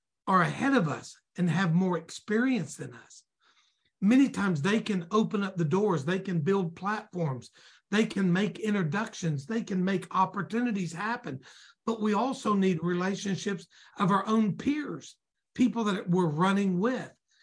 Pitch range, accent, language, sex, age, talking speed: 170-210 Hz, American, English, male, 60-79, 155 wpm